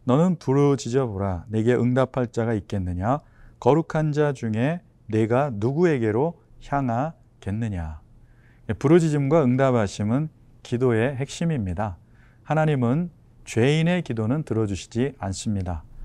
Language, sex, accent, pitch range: Korean, male, native, 110-150 Hz